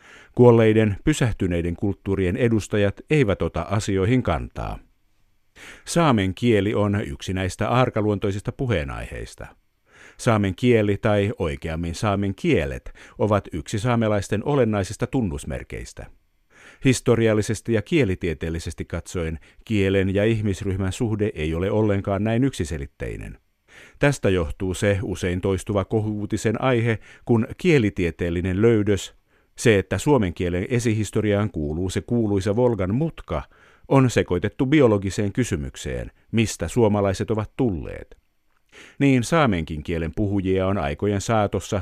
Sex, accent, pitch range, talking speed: male, native, 95-115 Hz, 105 wpm